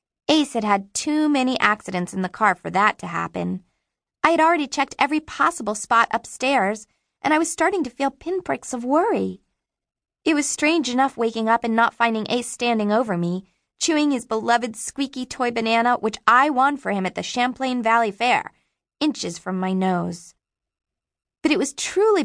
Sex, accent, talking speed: female, American, 180 wpm